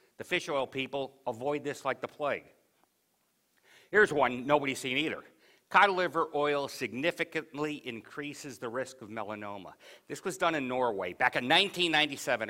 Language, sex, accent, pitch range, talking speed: English, male, American, 120-165 Hz, 150 wpm